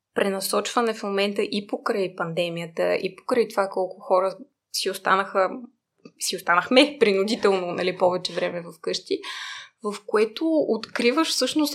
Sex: female